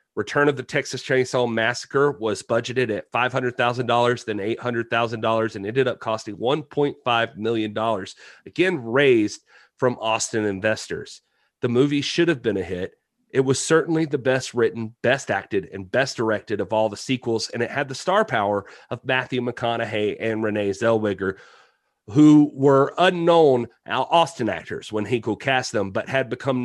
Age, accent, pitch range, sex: 30-49, American, 110-130 Hz, male